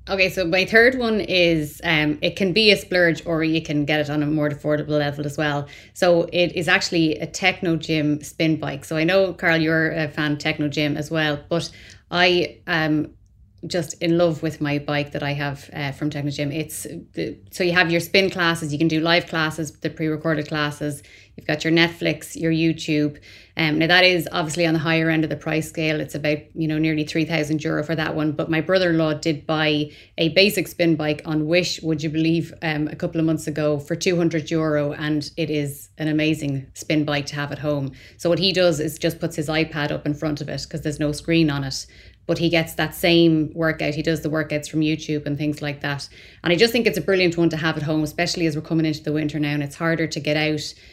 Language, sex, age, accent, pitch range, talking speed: English, female, 20-39, Irish, 150-165 Hz, 230 wpm